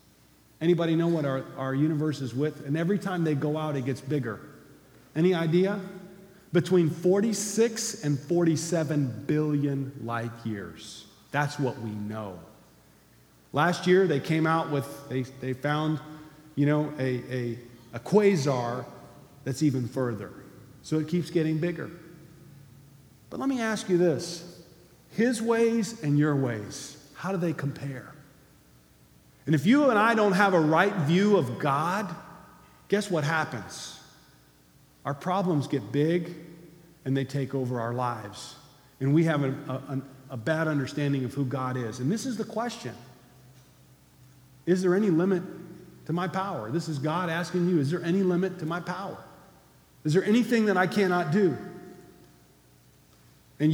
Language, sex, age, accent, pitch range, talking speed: English, male, 40-59, American, 130-180 Hz, 150 wpm